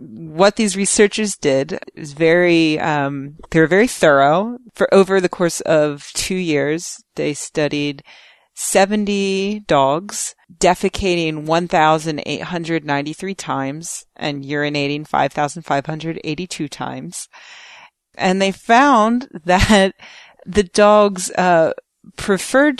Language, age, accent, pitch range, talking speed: English, 30-49, American, 145-195 Hz, 95 wpm